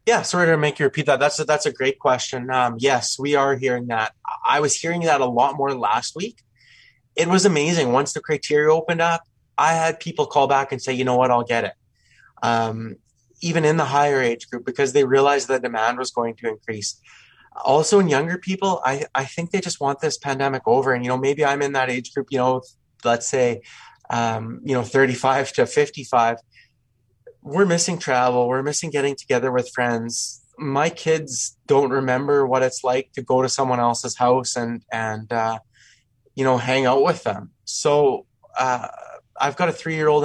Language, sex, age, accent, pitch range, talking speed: English, male, 20-39, American, 125-150 Hz, 200 wpm